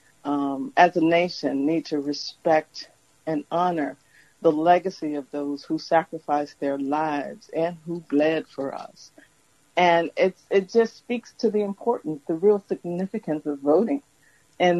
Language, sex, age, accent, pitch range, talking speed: English, female, 50-69, American, 150-200 Hz, 140 wpm